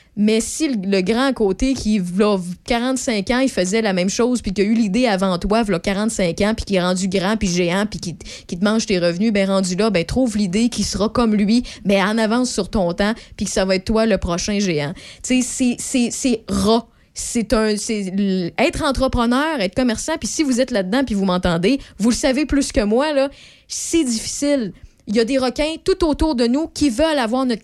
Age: 20-39